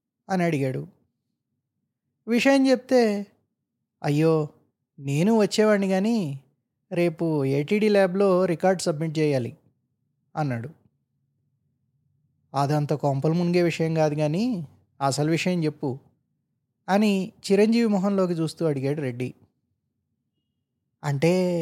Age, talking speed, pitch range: 20-39, 85 wpm, 135-190 Hz